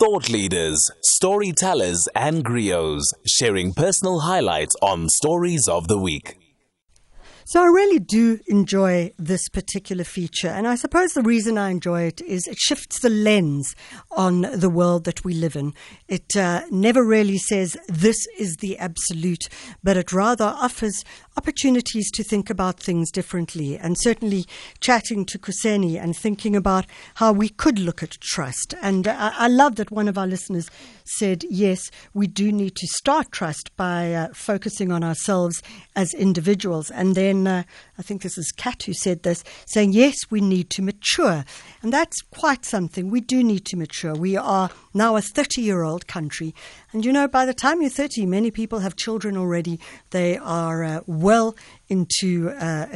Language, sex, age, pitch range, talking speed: English, female, 60-79, 170-220 Hz, 170 wpm